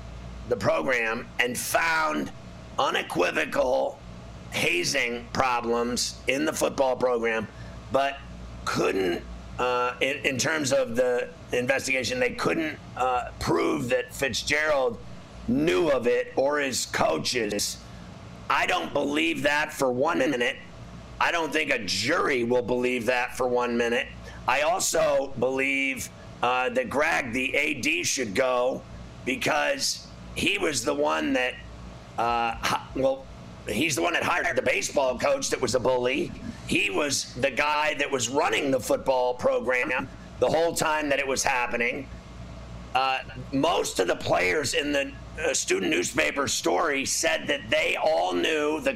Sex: male